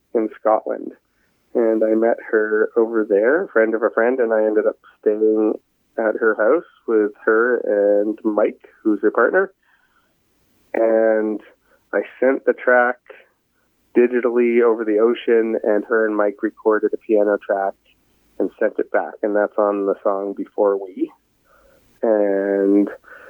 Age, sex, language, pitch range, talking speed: 30-49, male, English, 100-125 Hz, 145 wpm